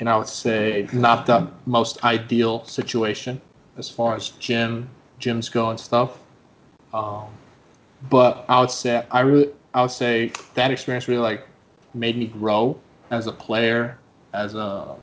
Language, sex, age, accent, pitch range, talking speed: English, male, 20-39, American, 110-125 Hz, 155 wpm